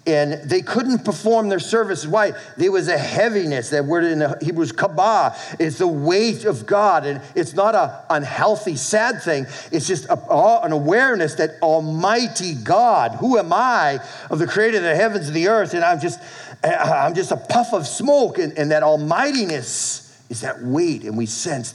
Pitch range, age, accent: 130-185 Hz, 50-69, American